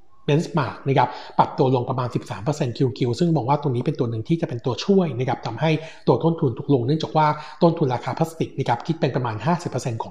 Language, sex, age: Thai, male, 60-79